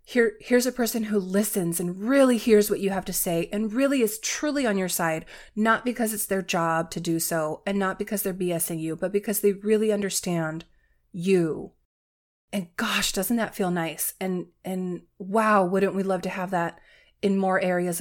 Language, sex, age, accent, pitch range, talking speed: English, female, 30-49, American, 180-220 Hz, 195 wpm